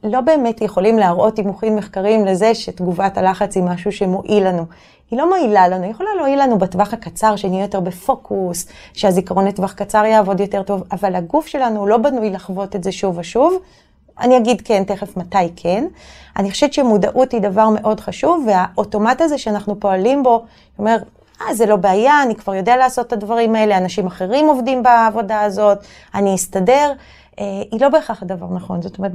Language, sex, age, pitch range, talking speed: Hebrew, female, 30-49, 195-240 Hz, 180 wpm